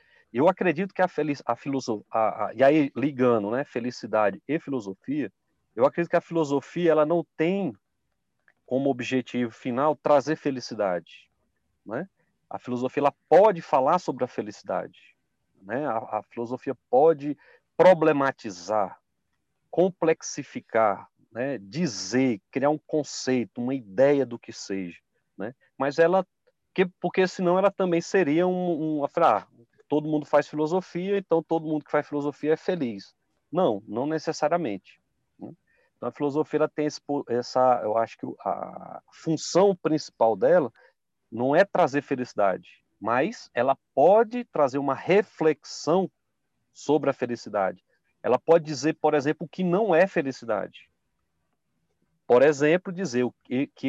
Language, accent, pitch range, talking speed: Portuguese, Brazilian, 130-170 Hz, 140 wpm